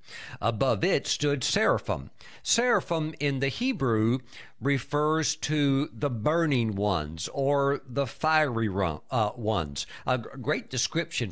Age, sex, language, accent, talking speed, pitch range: 60-79, male, English, American, 105 wpm, 110-150 Hz